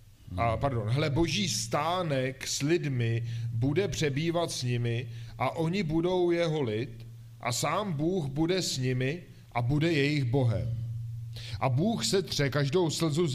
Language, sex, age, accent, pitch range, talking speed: Czech, male, 40-59, native, 120-165 Hz, 150 wpm